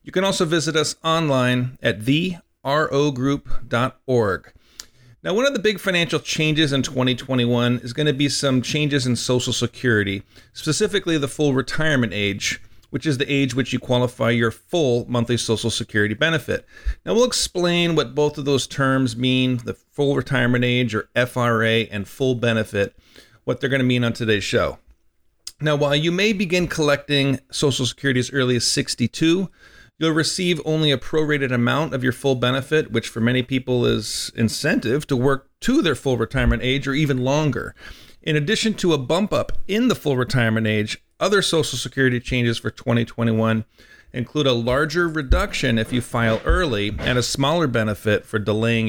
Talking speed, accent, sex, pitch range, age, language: 170 wpm, American, male, 120-155 Hz, 40-59, English